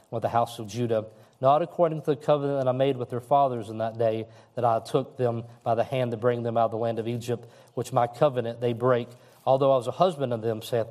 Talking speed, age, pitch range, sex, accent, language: 265 wpm, 40-59, 115-140 Hz, male, American, English